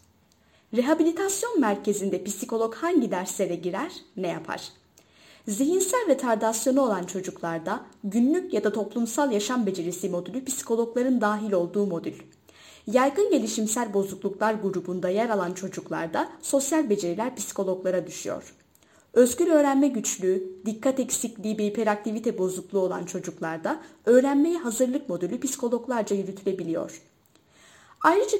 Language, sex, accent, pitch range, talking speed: Turkish, female, native, 195-275 Hz, 105 wpm